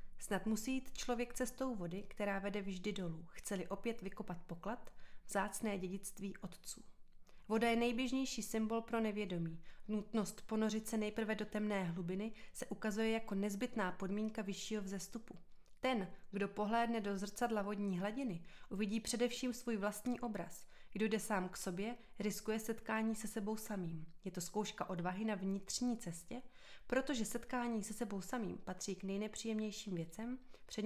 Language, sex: Czech, female